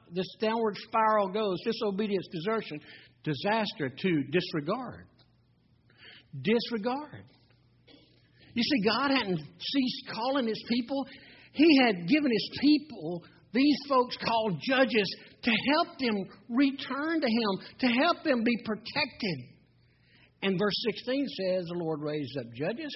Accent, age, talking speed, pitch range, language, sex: American, 60-79, 125 wpm, 150-235 Hz, English, male